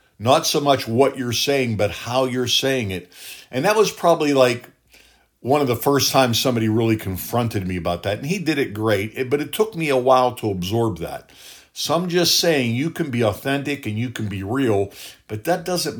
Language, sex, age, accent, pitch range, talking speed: English, male, 50-69, American, 105-135 Hz, 215 wpm